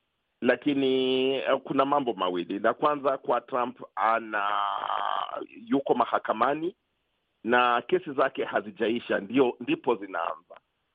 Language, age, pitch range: Swahili, 50-69, 110-150 Hz